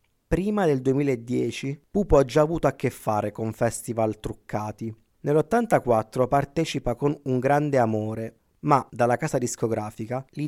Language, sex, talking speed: Italian, male, 135 wpm